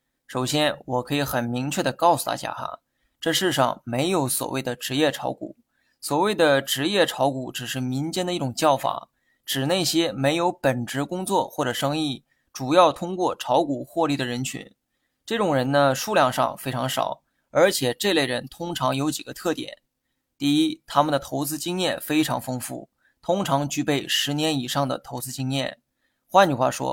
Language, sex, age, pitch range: Chinese, male, 20-39, 130-165 Hz